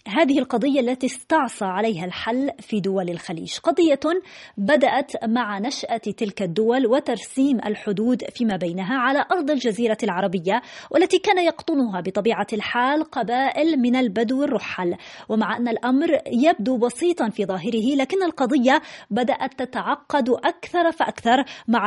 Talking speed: 125 wpm